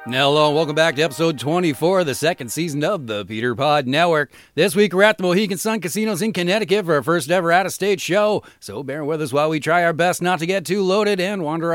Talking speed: 240 wpm